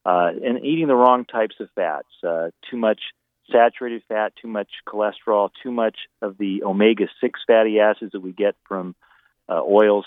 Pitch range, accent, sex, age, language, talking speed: 100-125 Hz, American, male, 40-59, English, 175 wpm